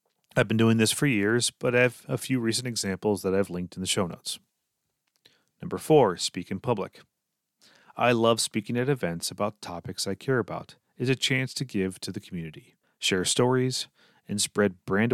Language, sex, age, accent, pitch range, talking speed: English, male, 30-49, American, 100-130 Hz, 190 wpm